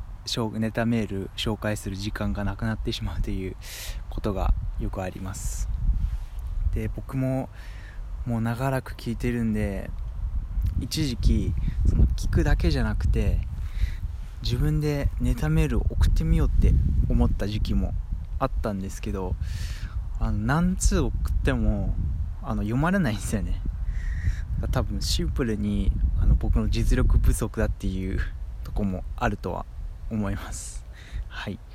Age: 20-39